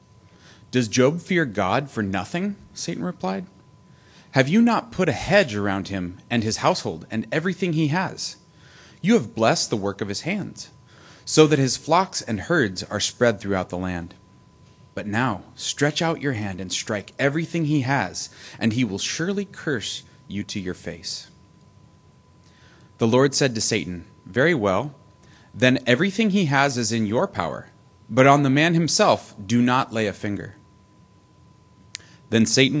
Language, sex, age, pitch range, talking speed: English, male, 30-49, 95-135 Hz, 165 wpm